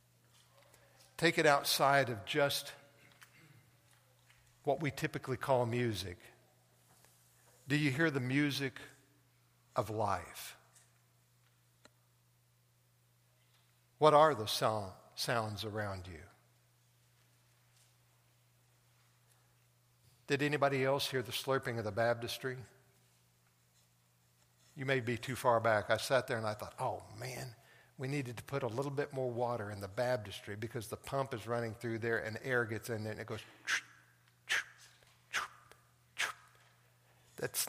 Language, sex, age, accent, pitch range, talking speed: English, male, 60-79, American, 110-130 Hz, 120 wpm